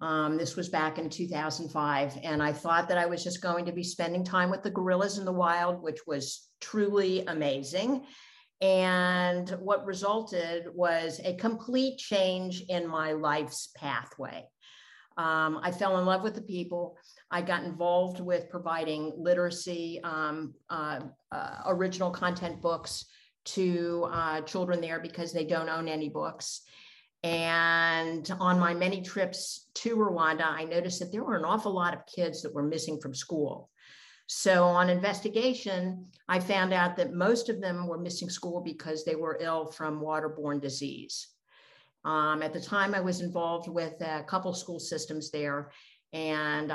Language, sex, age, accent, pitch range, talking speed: English, female, 50-69, American, 155-185 Hz, 160 wpm